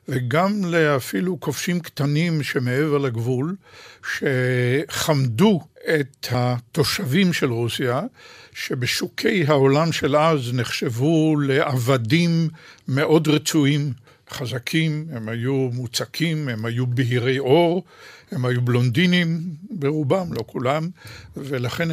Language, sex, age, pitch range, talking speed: Hebrew, male, 60-79, 125-155 Hz, 95 wpm